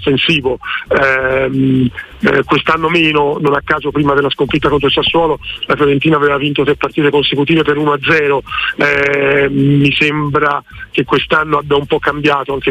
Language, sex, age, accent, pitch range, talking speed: Italian, male, 40-59, native, 140-160 Hz, 155 wpm